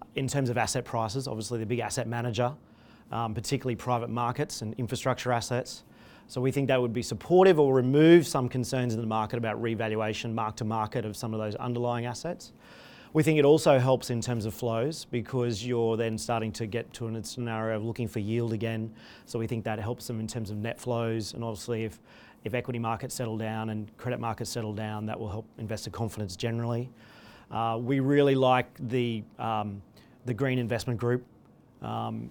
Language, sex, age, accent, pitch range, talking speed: English, male, 30-49, Australian, 115-125 Hz, 195 wpm